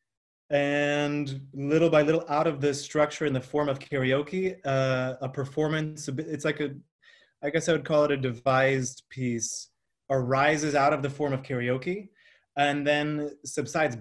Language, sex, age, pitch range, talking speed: English, male, 30-49, 130-150 Hz, 165 wpm